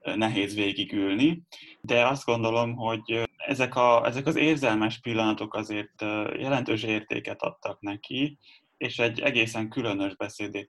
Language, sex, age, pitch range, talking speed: Hungarian, male, 10-29, 105-120 Hz, 125 wpm